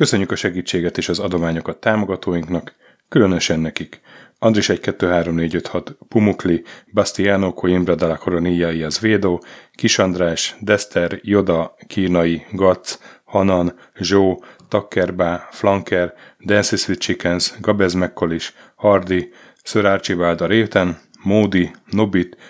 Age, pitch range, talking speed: 30-49, 85-100 Hz, 95 wpm